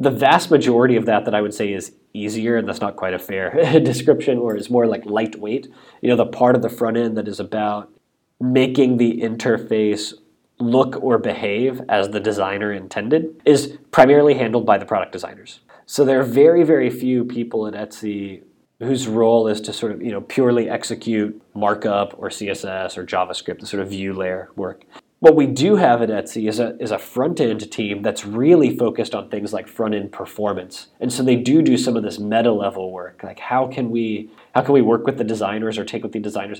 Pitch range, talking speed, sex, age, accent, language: 100-120 Hz, 215 wpm, male, 20-39, American, English